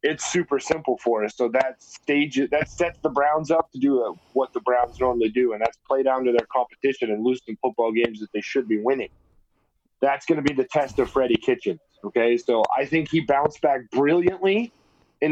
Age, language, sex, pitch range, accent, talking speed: 30-49, English, male, 125-165 Hz, American, 215 wpm